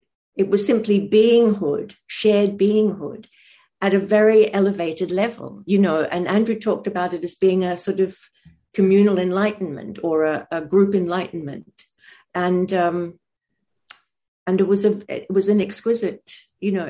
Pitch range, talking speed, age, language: 170-200 Hz, 150 wpm, 60-79, English